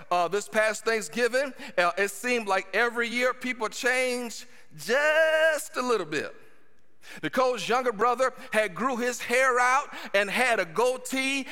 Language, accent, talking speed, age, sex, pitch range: English, American, 145 wpm, 40-59, male, 210-275 Hz